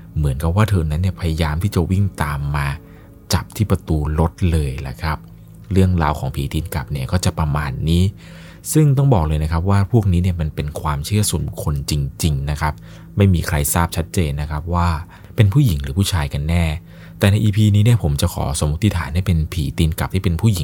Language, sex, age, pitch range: Thai, male, 20-39, 80-100 Hz